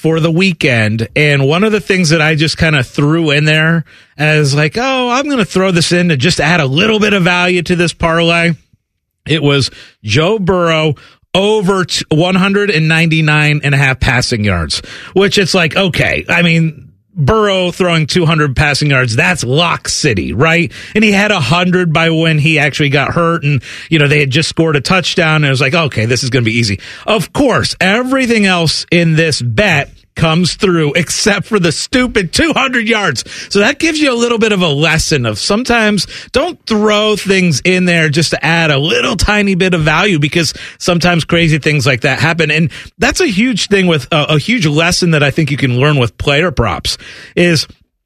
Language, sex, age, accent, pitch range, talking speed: English, male, 40-59, American, 145-190 Hz, 200 wpm